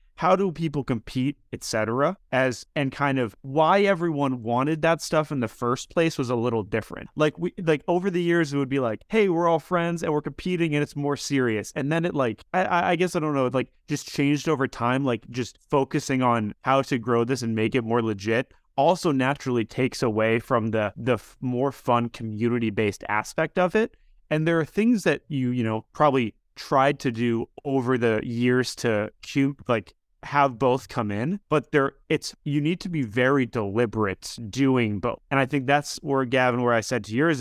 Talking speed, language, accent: 205 wpm, English, American